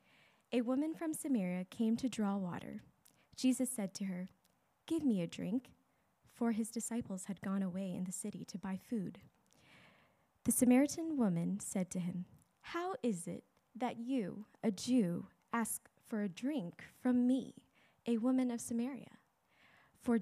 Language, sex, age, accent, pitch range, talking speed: English, female, 20-39, American, 195-250 Hz, 155 wpm